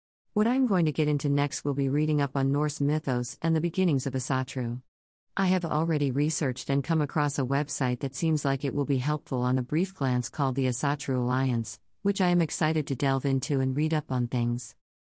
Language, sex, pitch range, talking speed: English, female, 130-155 Hz, 220 wpm